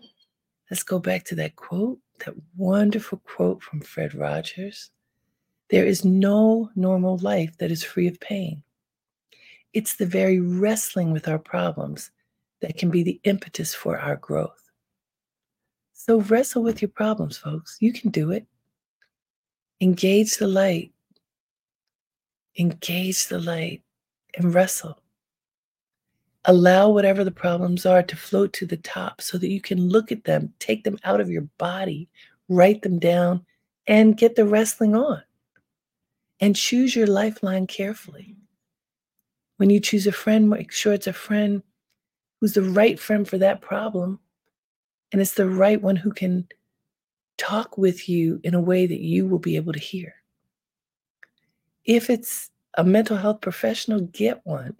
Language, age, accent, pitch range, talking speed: English, 50-69, American, 175-210 Hz, 150 wpm